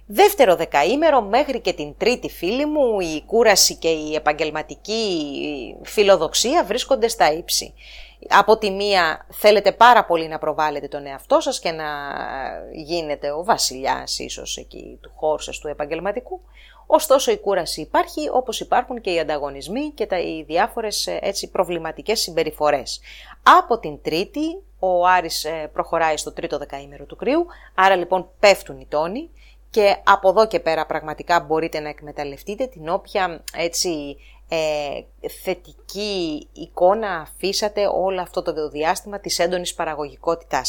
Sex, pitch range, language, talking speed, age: female, 155-215 Hz, English, 140 wpm, 30-49